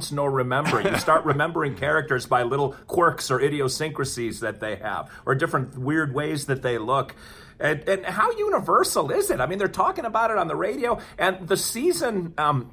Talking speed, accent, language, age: 190 wpm, American, English, 40-59